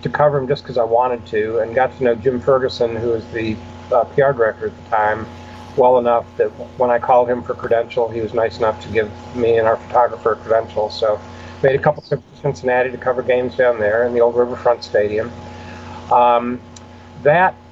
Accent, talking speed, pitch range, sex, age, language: American, 215 wpm, 115-135 Hz, male, 50-69, English